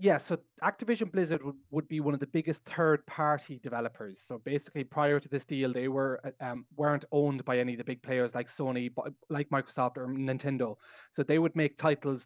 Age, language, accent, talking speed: 20-39, English, Irish, 205 wpm